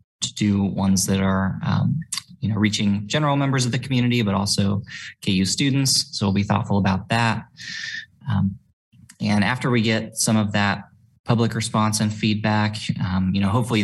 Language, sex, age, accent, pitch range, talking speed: English, male, 20-39, American, 100-110 Hz, 175 wpm